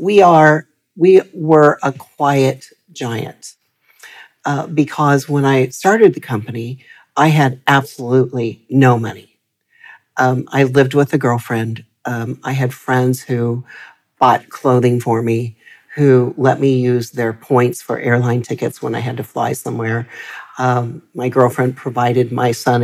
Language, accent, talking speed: English, American, 145 wpm